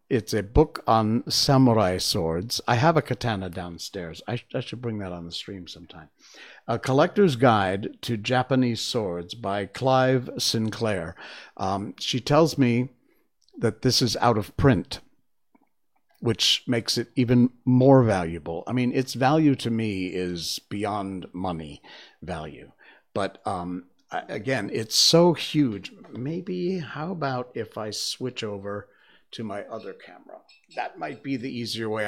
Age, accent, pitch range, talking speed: 50-69, American, 95-125 Hz, 145 wpm